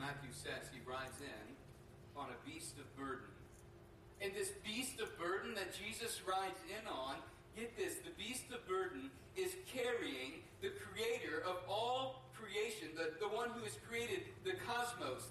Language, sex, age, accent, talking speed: English, male, 40-59, American, 160 wpm